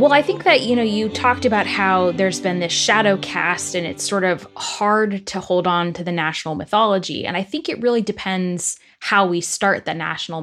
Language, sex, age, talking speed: English, female, 10-29, 220 wpm